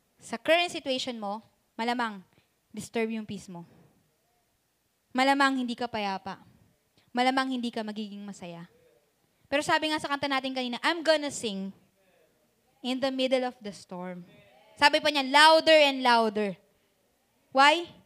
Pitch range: 230-310 Hz